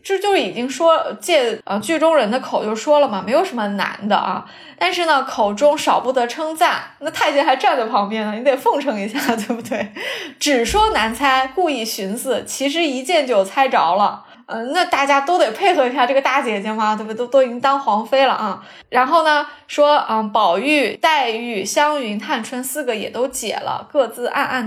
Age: 20-39